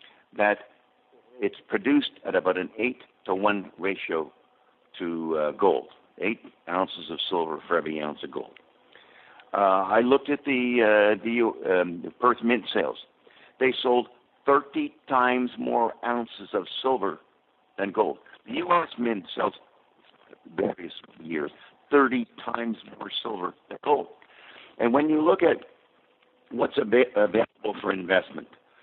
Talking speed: 125 wpm